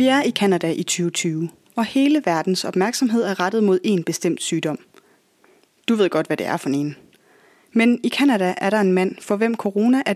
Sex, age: female, 30-49